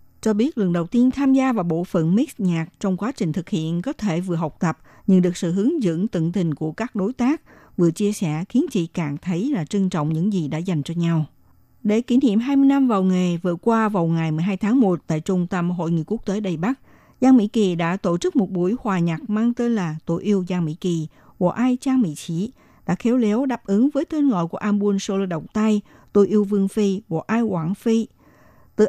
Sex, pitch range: female, 170-225 Hz